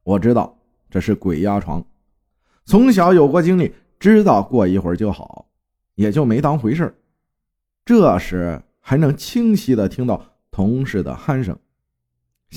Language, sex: Chinese, male